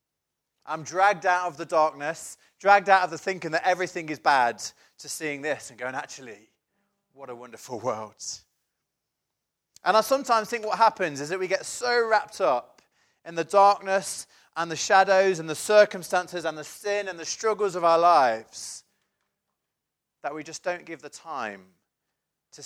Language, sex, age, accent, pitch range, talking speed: English, male, 30-49, British, 145-195 Hz, 170 wpm